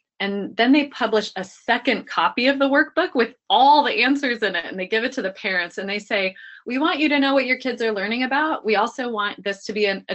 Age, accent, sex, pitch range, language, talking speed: 20-39, American, female, 190-255 Hz, English, 260 wpm